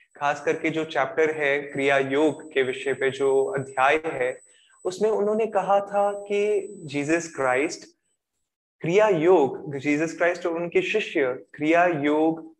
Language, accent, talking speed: Hindi, native, 140 wpm